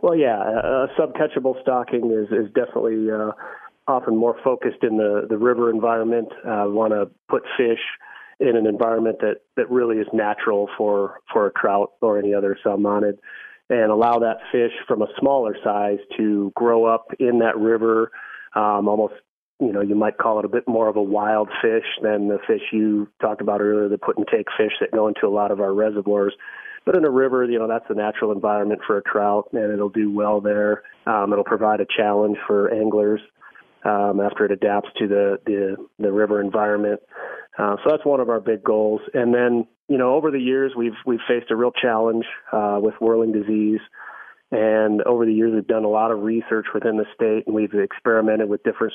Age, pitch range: 30-49, 105-115 Hz